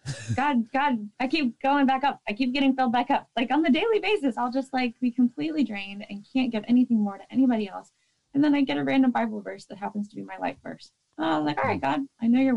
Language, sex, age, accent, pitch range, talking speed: English, female, 20-39, American, 200-260 Hz, 265 wpm